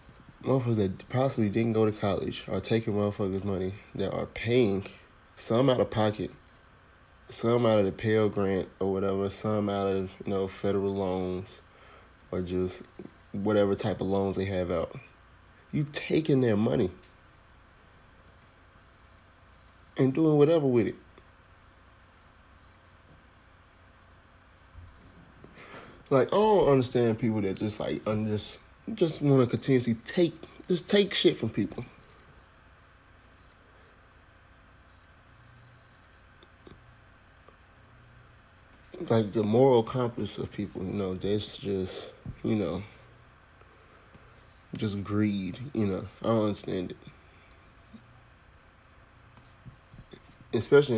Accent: American